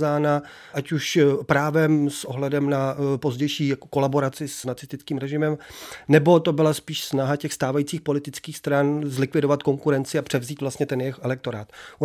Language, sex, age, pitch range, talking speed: Czech, male, 30-49, 135-160 Hz, 145 wpm